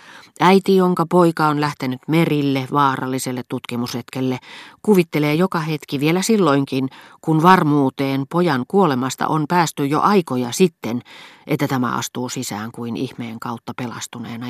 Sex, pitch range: female, 120-160 Hz